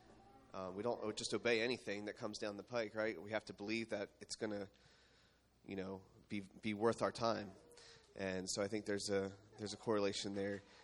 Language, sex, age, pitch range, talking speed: English, male, 30-49, 100-110 Hz, 205 wpm